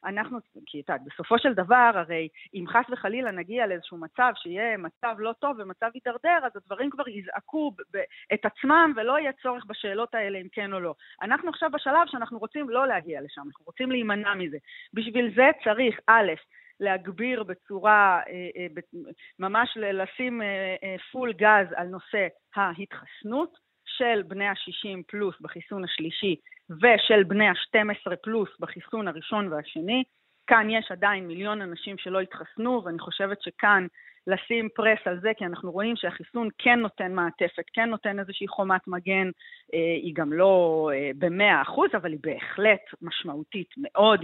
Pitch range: 180-235 Hz